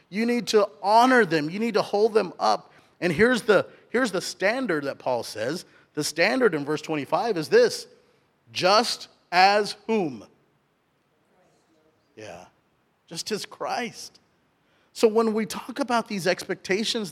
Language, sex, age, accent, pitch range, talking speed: English, male, 40-59, American, 150-205 Hz, 140 wpm